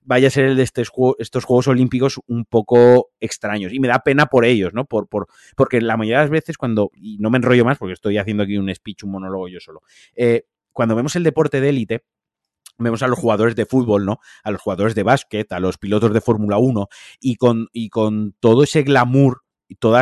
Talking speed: 230 wpm